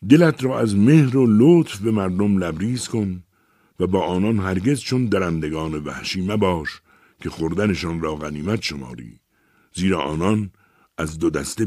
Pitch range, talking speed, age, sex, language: 80-110 Hz, 150 wpm, 60-79, male, Persian